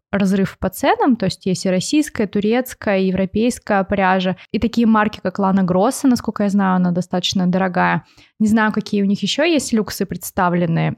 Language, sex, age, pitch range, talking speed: Russian, female, 20-39, 180-225 Hz, 175 wpm